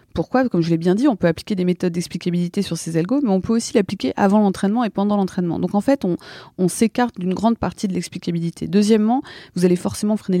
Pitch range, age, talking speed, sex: 170-210 Hz, 20-39, 235 wpm, female